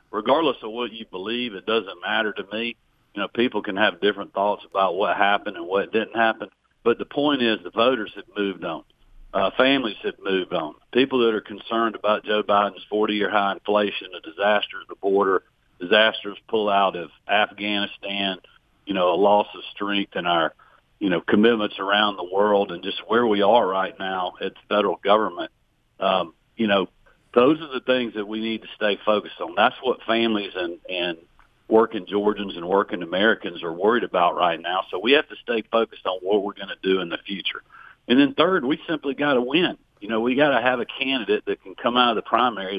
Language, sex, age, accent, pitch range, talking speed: English, male, 50-69, American, 100-115 Hz, 210 wpm